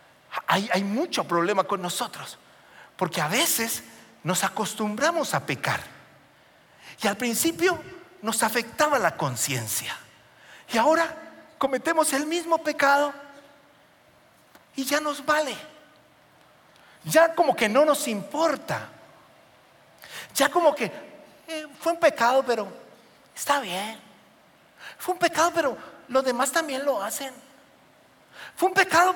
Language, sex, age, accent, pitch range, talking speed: Spanish, male, 50-69, Mexican, 220-305 Hz, 120 wpm